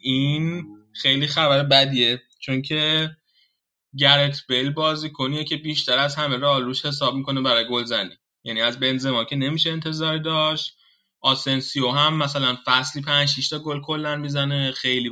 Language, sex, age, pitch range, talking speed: Persian, male, 20-39, 130-150 Hz, 150 wpm